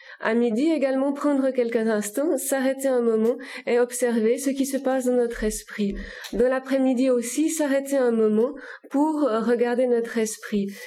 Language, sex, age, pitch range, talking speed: Italian, female, 30-49, 230-265 Hz, 155 wpm